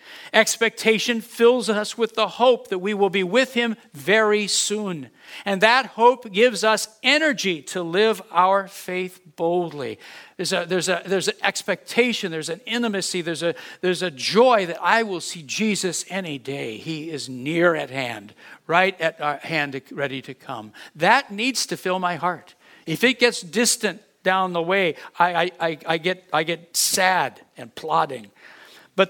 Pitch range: 165-225 Hz